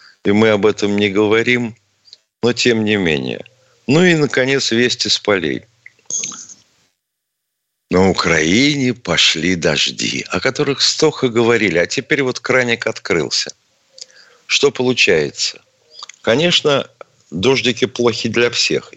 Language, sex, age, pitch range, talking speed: Russian, male, 50-69, 85-120 Hz, 115 wpm